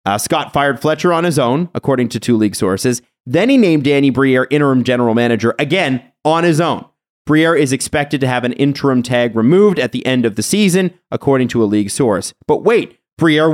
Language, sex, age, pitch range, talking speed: English, male, 30-49, 115-145 Hz, 210 wpm